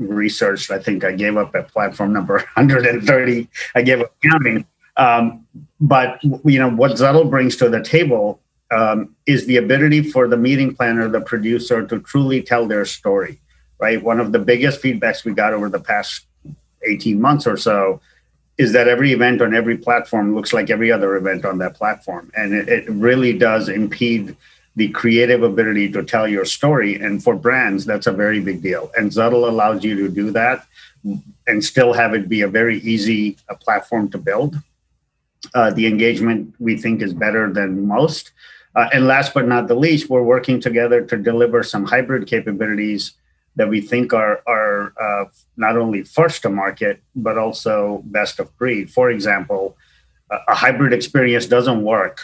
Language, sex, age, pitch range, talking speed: English, male, 50-69, 105-125 Hz, 180 wpm